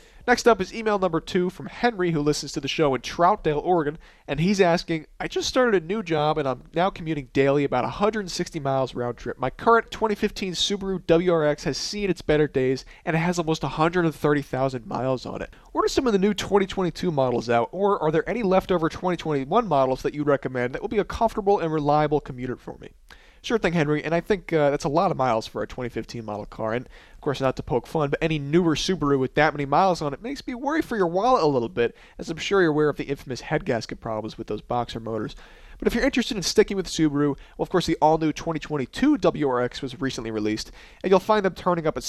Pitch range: 135-190 Hz